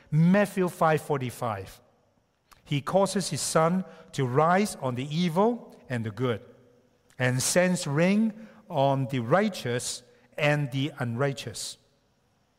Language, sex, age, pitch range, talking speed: English, male, 60-79, 120-170 Hz, 110 wpm